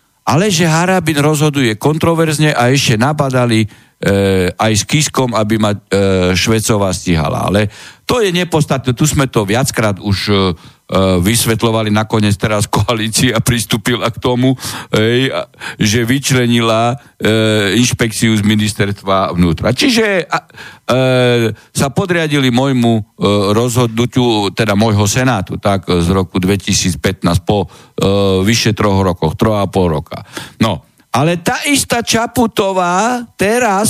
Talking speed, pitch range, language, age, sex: 120 wpm, 105-150 Hz, Slovak, 50-69, male